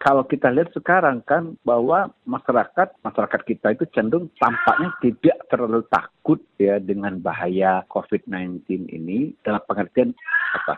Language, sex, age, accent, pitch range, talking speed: Indonesian, male, 40-59, native, 100-165 Hz, 130 wpm